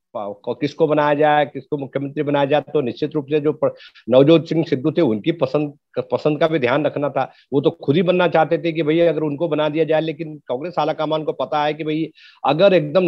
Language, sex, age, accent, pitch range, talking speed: Hindi, male, 50-69, native, 140-170 Hz, 225 wpm